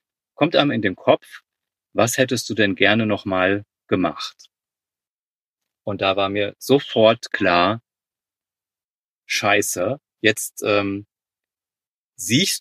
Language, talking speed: German, 105 wpm